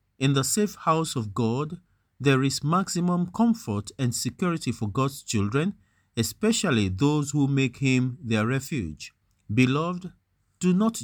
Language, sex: English, male